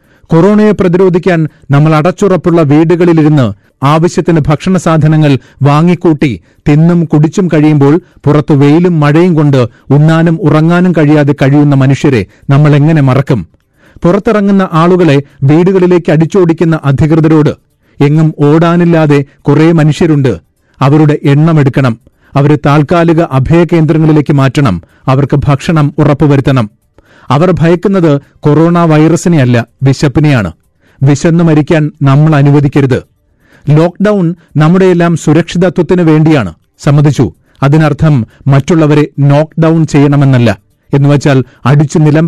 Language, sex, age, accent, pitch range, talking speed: Malayalam, male, 30-49, native, 140-165 Hz, 90 wpm